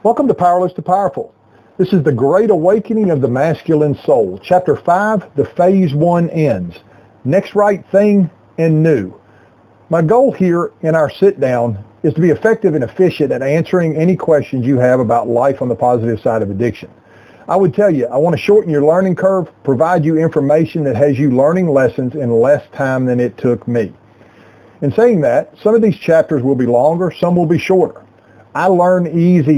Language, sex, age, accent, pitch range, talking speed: English, male, 40-59, American, 130-180 Hz, 195 wpm